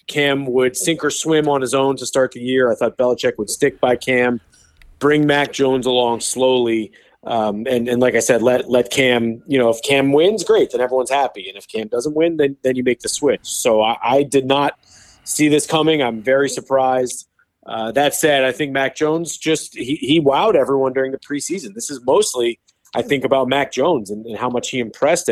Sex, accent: male, American